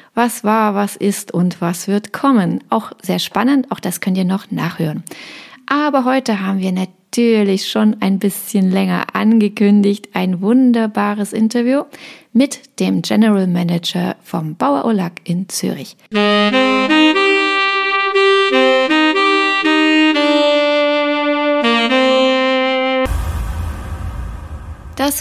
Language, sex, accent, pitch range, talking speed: German, female, German, 185-245 Hz, 95 wpm